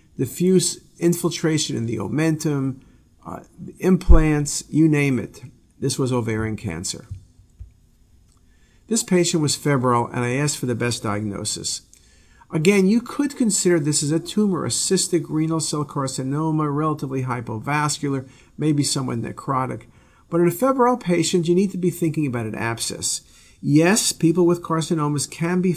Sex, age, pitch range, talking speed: male, 50-69, 120-170 Hz, 145 wpm